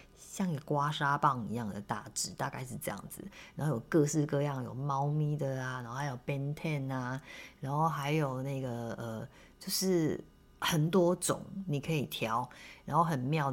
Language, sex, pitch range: Chinese, female, 125-155 Hz